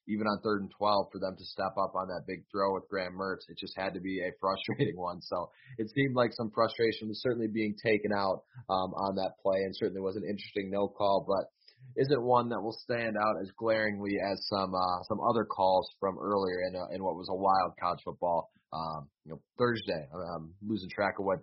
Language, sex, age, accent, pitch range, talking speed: English, male, 20-39, American, 90-110 Hz, 230 wpm